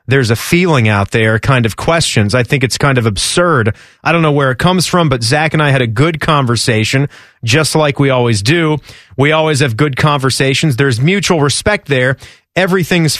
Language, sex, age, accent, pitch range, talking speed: English, male, 30-49, American, 140-205 Hz, 200 wpm